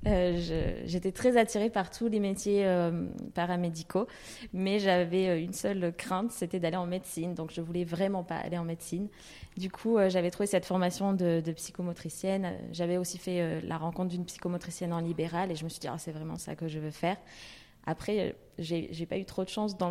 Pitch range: 165-195 Hz